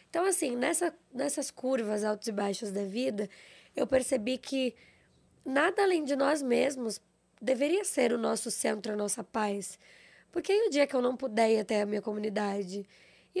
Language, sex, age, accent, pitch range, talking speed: Portuguese, female, 10-29, Brazilian, 215-265 Hz, 180 wpm